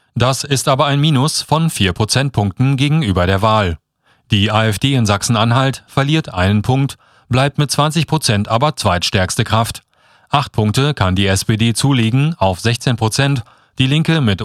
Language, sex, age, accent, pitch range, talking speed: German, male, 30-49, German, 105-140 Hz, 155 wpm